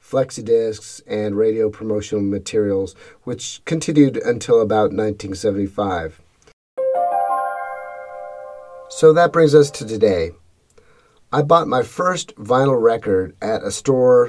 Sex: male